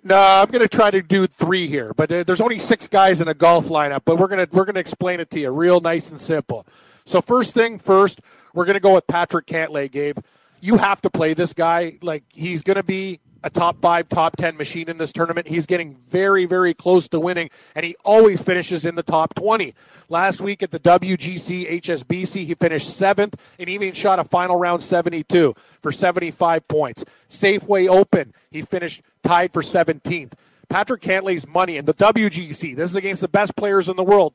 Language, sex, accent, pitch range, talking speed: English, male, American, 165-195 Hz, 205 wpm